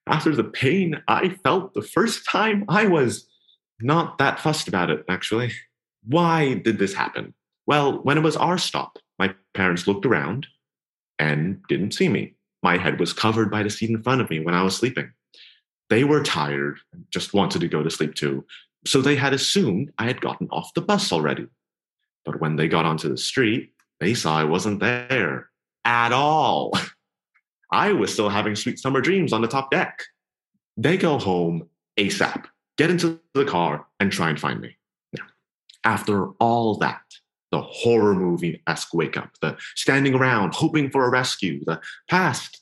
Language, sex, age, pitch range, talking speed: English, male, 30-49, 95-145 Hz, 175 wpm